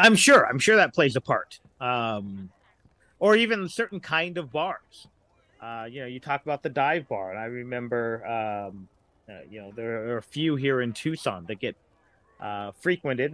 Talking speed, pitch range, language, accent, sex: 190 wpm, 115-140 Hz, English, American, male